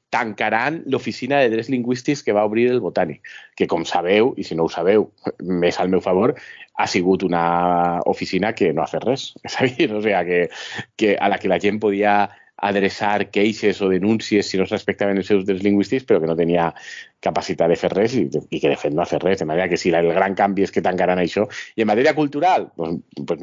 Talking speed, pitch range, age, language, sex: 220 wpm, 95-115 Hz, 30-49, Spanish, male